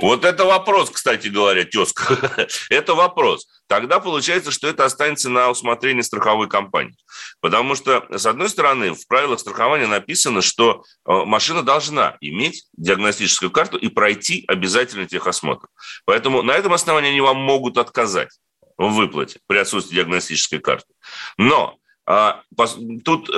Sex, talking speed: male, 135 wpm